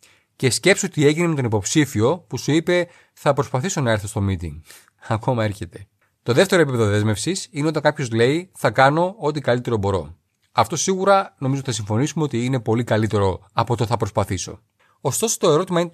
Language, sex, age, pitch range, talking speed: Greek, male, 30-49, 105-145 Hz, 180 wpm